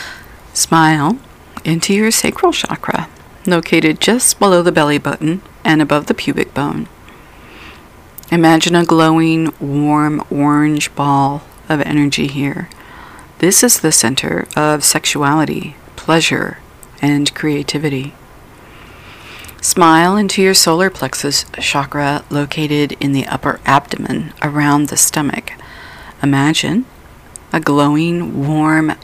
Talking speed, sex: 105 wpm, female